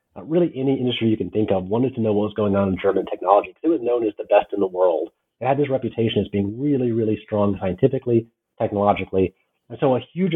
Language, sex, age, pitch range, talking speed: English, male, 30-49, 110-145 Hz, 250 wpm